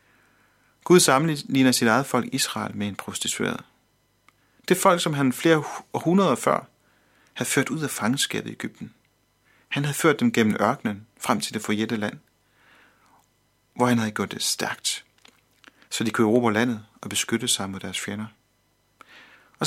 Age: 40-59